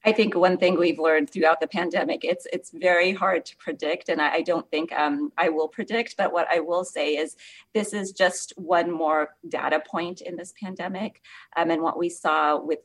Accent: American